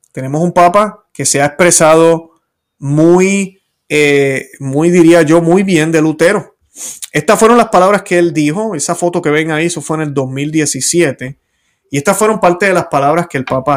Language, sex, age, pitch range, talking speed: Spanish, male, 30-49, 130-175 Hz, 185 wpm